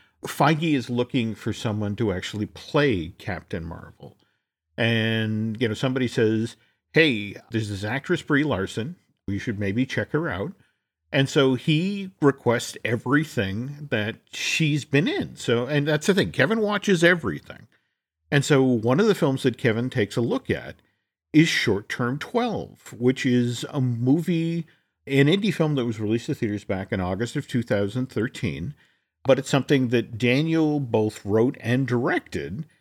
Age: 50-69